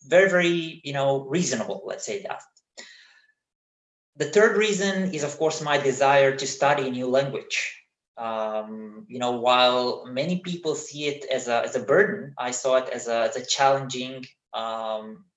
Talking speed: 170 wpm